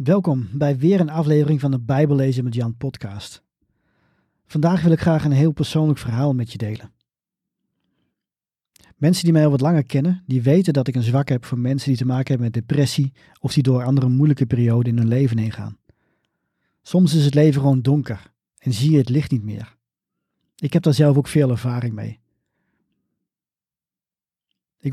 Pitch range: 125-160 Hz